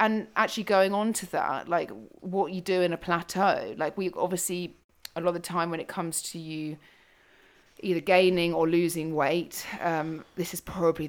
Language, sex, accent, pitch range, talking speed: English, female, British, 155-180 Hz, 190 wpm